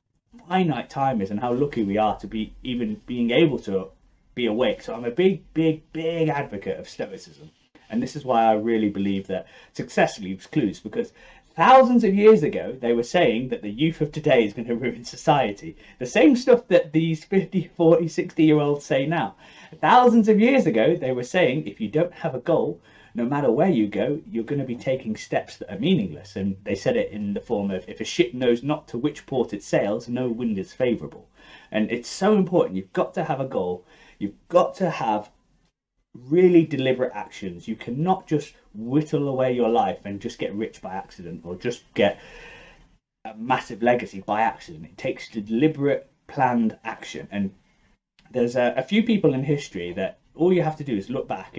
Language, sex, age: English, male, 30-49